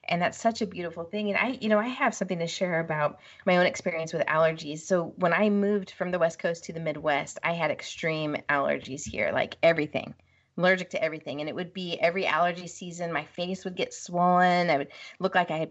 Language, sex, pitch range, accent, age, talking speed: English, female, 160-200 Hz, American, 30-49, 235 wpm